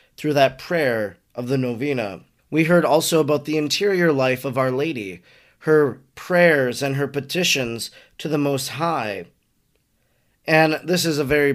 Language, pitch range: English, 130-165 Hz